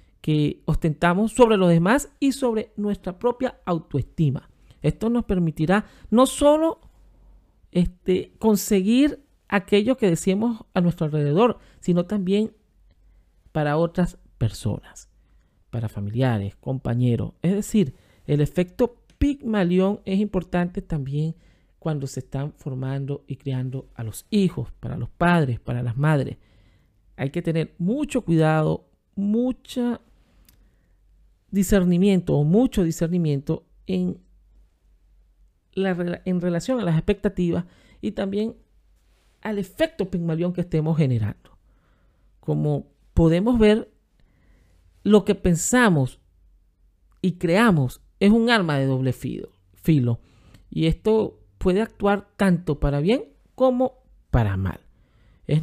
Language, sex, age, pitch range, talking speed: Spanish, male, 50-69, 130-205 Hz, 110 wpm